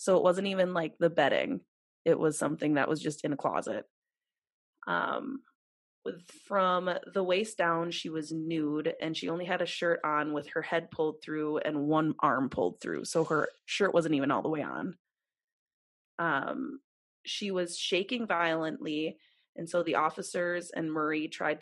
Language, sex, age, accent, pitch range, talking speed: English, female, 20-39, American, 160-195 Hz, 175 wpm